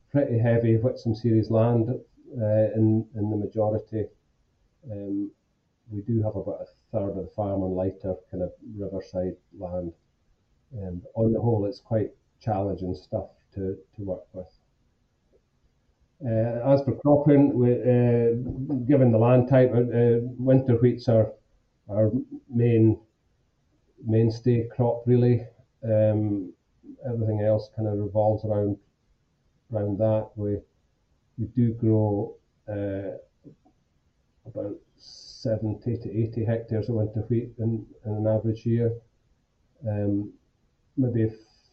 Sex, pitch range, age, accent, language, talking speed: male, 105-120 Hz, 40-59, British, English, 130 wpm